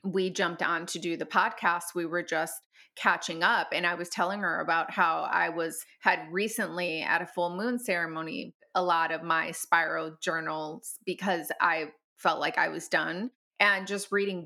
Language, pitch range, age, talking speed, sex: English, 175-205 Hz, 20-39, 185 wpm, female